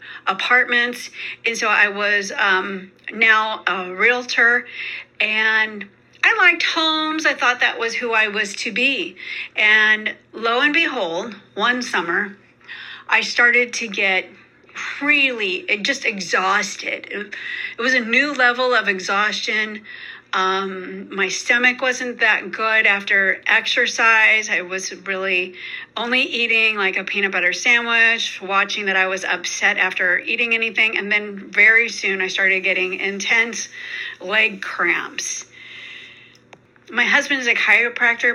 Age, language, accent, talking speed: 40-59, English, American, 130 wpm